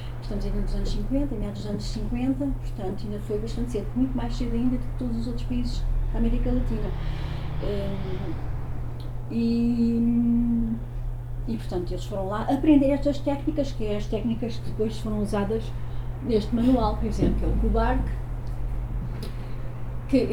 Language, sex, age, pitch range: Portuguese, female, 30-49, 115-135 Hz